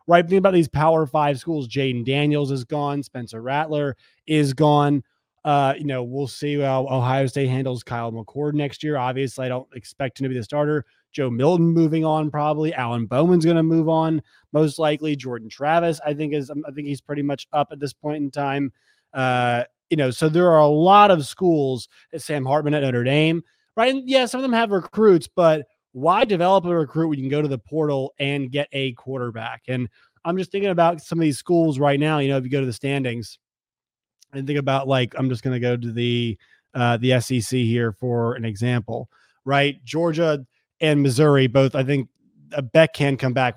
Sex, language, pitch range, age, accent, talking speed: male, English, 130-155 Hz, 20-39, American, 215 wpm